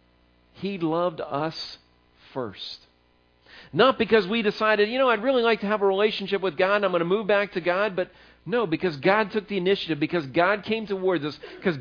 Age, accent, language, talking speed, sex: 50-69, American, English, 205 wpm, male